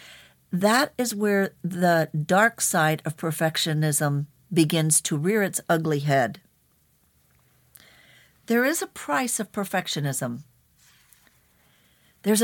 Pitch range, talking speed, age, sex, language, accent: 160-210 Hz, 100 wpm, 60-79, female, English, American